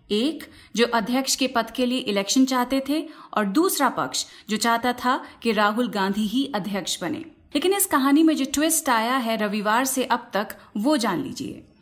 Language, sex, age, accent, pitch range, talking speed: Hindi, female, 30-49, native, 205-270 Hz, 190 wpm